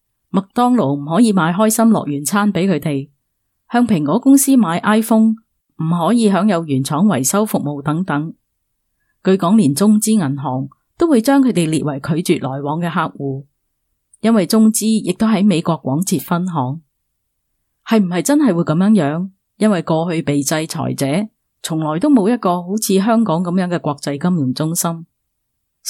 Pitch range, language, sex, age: 150-215 Hz, Chinese, female, 20-39